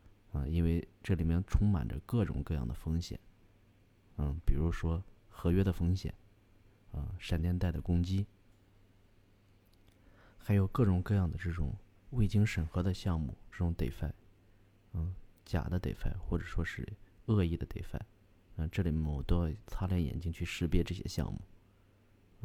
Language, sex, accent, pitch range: Chinese, male, native, 85-100 Hz